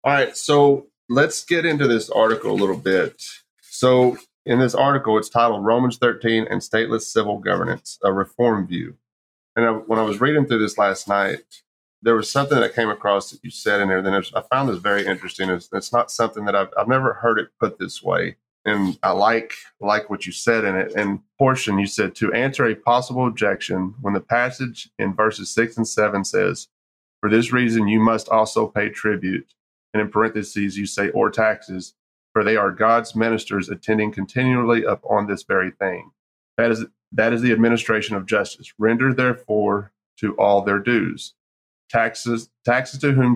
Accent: American